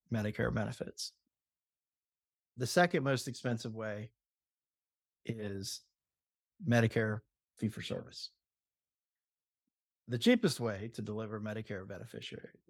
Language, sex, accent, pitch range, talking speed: English, male, American, 110-130 Hz, 90 wpm